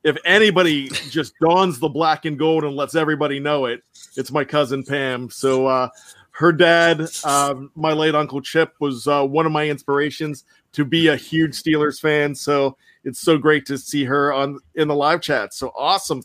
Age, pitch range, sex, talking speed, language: 40-59, 140-175 Hz, male, 195 wpm, English